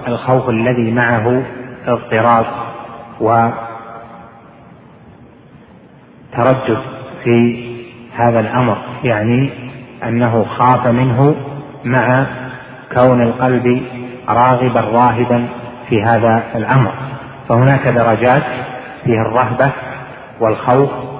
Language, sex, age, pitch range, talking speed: Arabic, male, 30-49, 120-130 Hz, 70 wpm